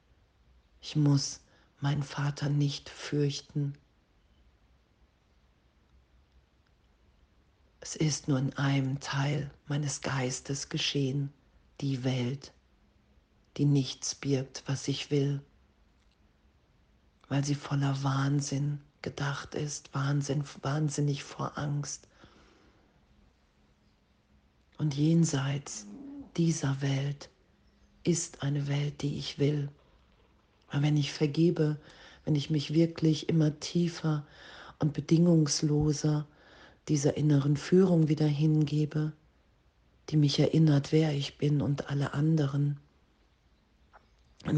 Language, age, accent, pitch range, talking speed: German, 40-59, German, 130-150 Hz, 95 wpm